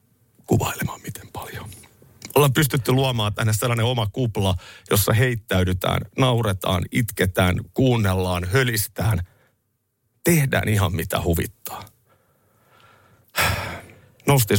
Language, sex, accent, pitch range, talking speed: Finnish, male, native, 95-120 Hz, 85 wpm